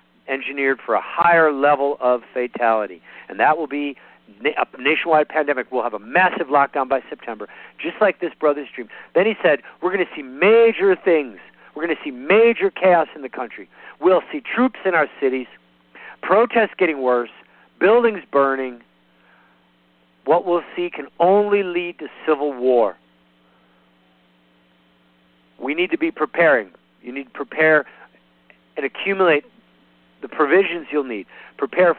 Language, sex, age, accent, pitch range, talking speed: English, male, 50-69, American, 105-175 Hz, 150 wpm